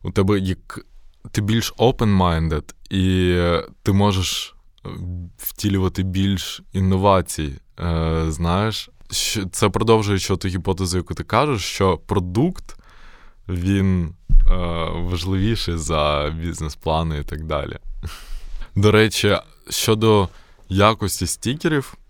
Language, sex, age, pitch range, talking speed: Ukrainian, male, 20-39, 80-95 Hz, 95 wpm